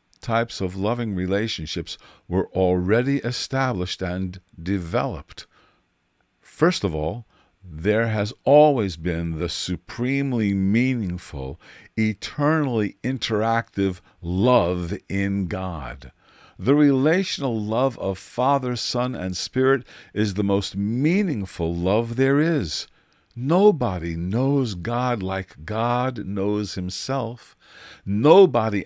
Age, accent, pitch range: 50-69, American, 90-120 Hz